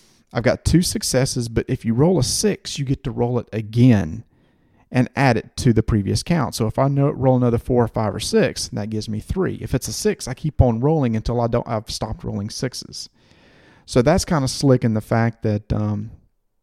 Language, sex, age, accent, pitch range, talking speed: English, male, 40-59, American, 105-125 Hz, 230 wpm